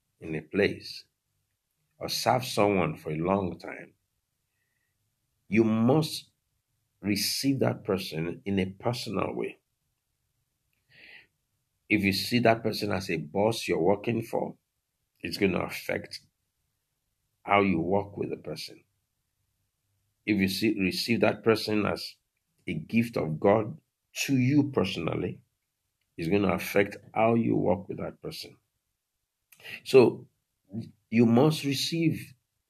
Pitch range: 100-125 Hz